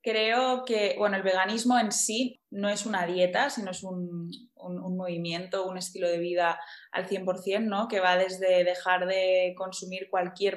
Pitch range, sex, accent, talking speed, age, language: 180-210 Hz, female, Spanish, 175 wpm, 20-39, English